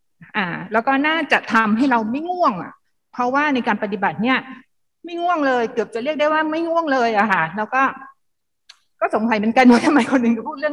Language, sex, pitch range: Thai, female, 220-300 Hz